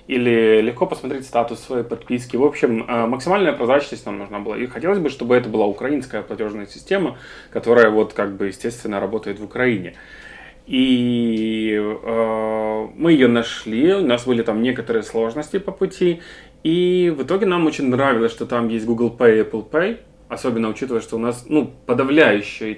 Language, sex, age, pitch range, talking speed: Russian, male, 20-39, 110-130 Hz, 170 wpm